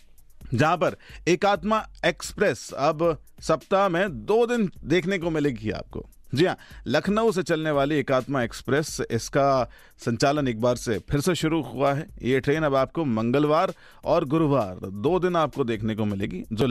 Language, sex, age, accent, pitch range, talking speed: Hindi, male, 40-59, native, 125-170 Hz, 160 wpm